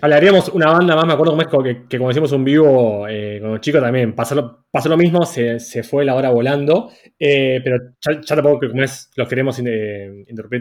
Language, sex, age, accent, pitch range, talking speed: Spanish, male, 20-39, Argentinian, 130-170 Hz, 210 wpm